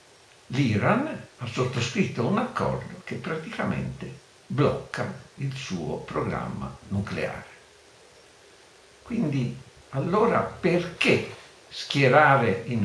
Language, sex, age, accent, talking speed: Italian, male, 60-79, native, 80 wpm